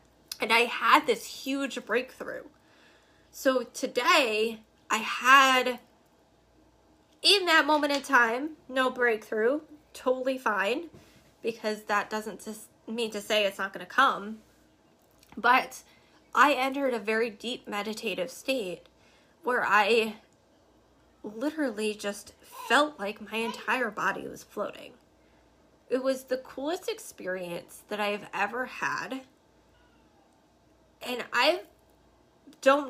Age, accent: 10-29, American